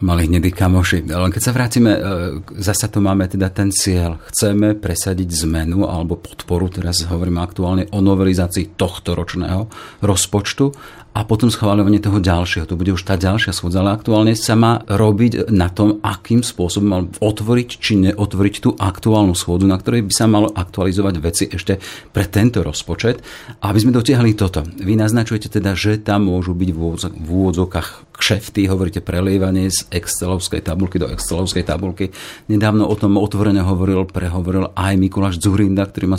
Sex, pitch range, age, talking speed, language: male, 90-105 Hz, 40-59, 160 wpm, Slovak